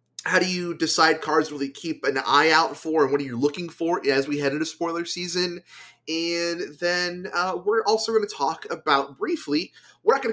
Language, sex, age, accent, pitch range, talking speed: English, male, 30-49, American, 135-170 Hz, 210 wpm